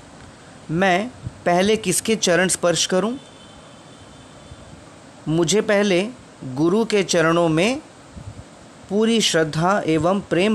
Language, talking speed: Hindi, 90 wpm